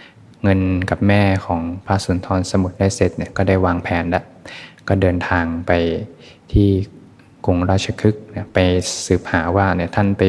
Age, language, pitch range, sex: 20-39, Thai, 90-100 Hz, male